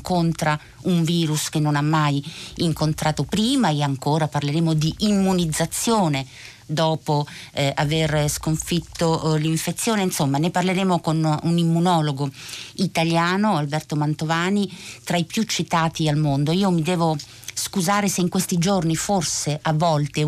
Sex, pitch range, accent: female, 150-180 Hz, native